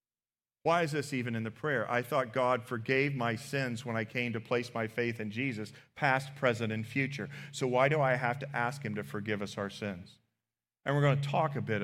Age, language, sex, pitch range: 40-59, English, male, 115-140 Hz